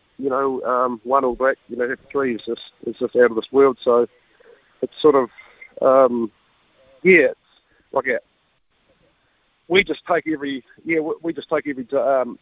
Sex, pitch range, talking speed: male, 125-150 Hz, 175 wpm